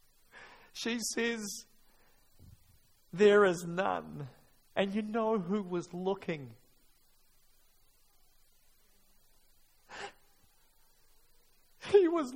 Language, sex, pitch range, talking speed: English, male, 185-245 Hz, 65 wpm